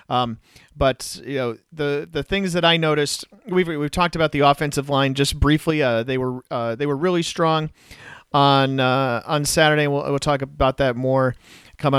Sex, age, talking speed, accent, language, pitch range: male, 40-59, 190 wpm, American, English, 130-155 Hz